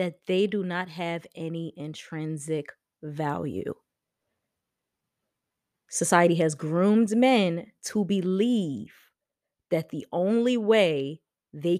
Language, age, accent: English, 20-39, American